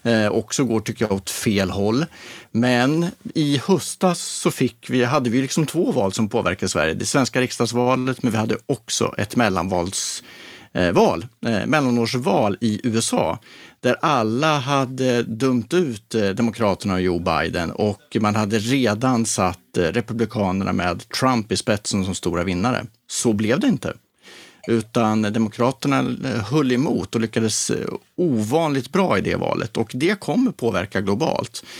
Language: Swedish